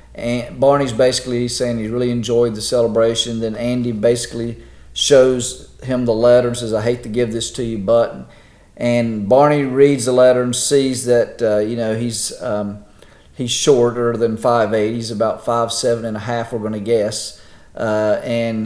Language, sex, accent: English, male, American